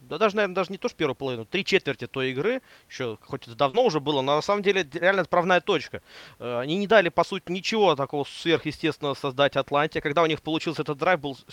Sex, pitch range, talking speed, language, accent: male, 140-195 Hz, 225 wpm, Russian, native